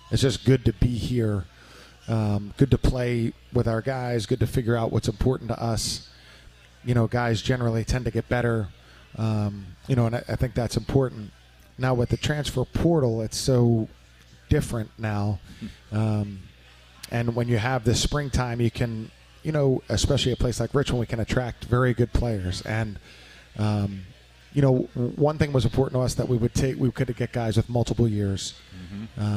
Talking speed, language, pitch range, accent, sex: 185 wpm, English, 105-125 Hz, American, male